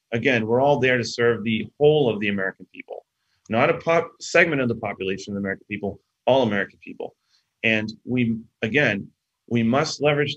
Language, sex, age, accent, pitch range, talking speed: English, male, 30-49, American, 110-135 Hz, 185 wpm